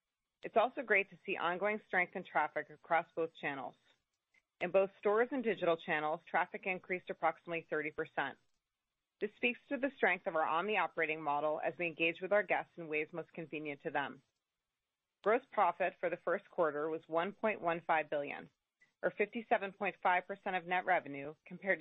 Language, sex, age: English, female, 30-49